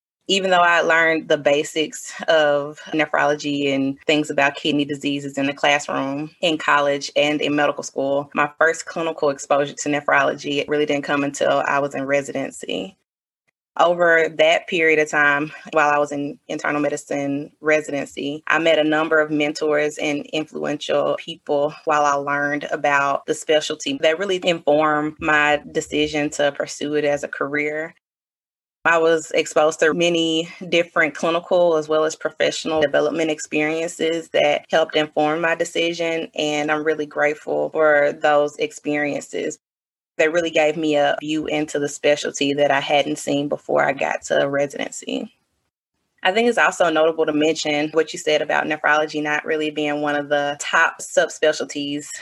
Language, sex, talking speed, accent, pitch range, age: English, female, 155 wpm, American, 145-160 Hz, 20-39